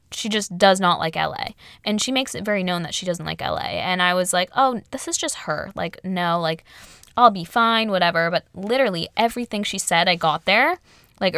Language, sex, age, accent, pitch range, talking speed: English, female, 10-29, American, 170-215 Hz, 220 wpm